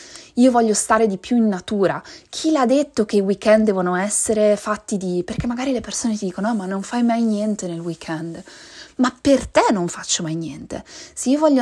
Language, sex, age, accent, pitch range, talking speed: Italian, female, 20-39, native, 185-240 Hz, 205 wpm